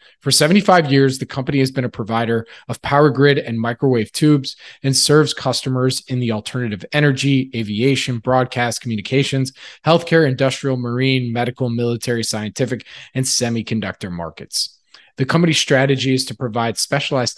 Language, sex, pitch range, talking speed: English, male, 120-145 Hz, 140 wpm